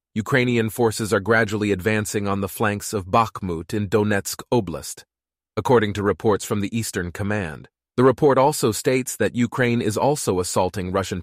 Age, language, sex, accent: 30-49, English, male, American